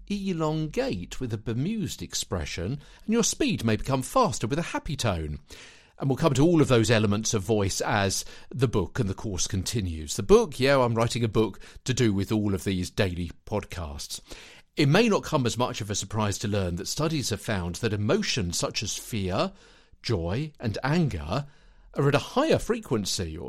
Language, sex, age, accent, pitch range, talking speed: English, male, 50-69, British, 95-135 Hz, 190 wpm